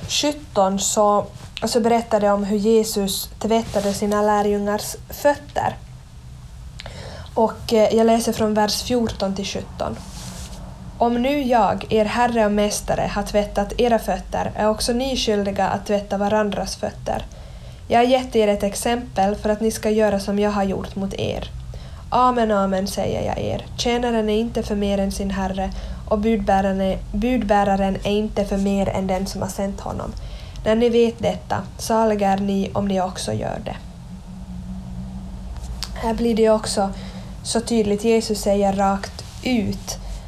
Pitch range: 195-225 Hz